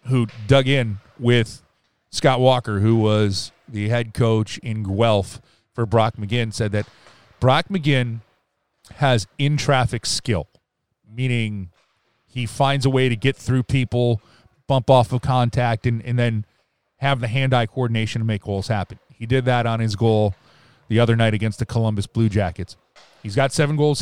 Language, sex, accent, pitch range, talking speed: English, male, American, 115-145 Hz, 160 wpm